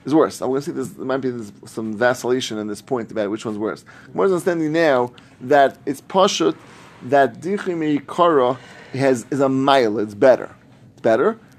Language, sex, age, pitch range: English, male, 30-49, 115-160 Hz